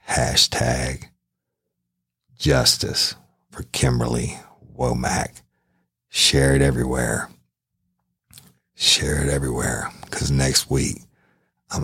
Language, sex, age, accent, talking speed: English, male, 60-79, American, 75 wpm